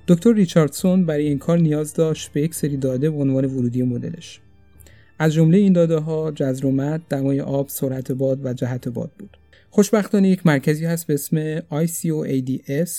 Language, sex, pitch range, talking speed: Persian, male, 130-155 Hz, 165 wpm